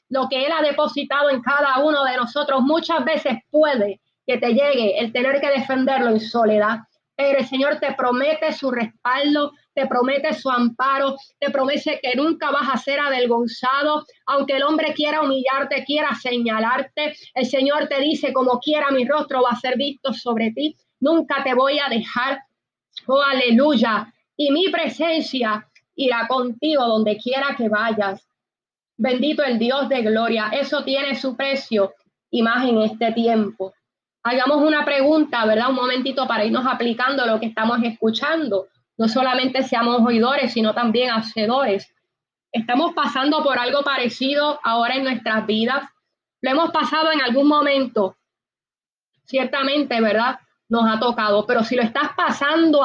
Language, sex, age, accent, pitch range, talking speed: Spanish, female, 20-39, American, 235-285 Hz, 155 wpm